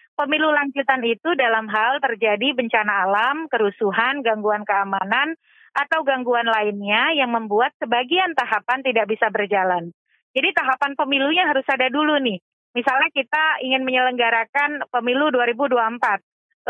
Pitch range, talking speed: 220-285 Hz, 120 wpm